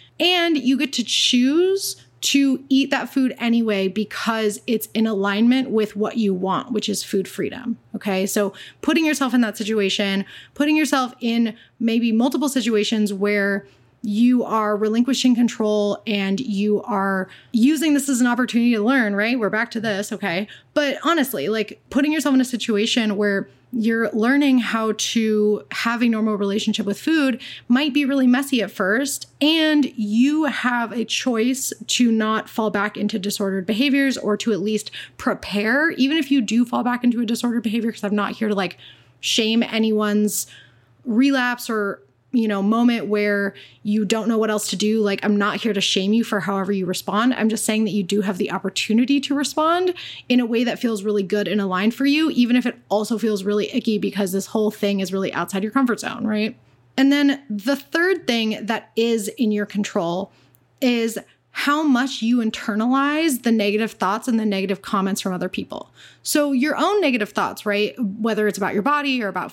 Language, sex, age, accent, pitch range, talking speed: English, female, 20-39, American, 205-255 Hz, 190 wpm